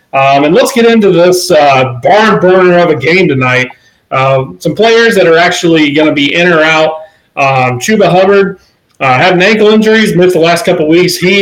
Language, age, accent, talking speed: English, 30-49, American, 200 wpm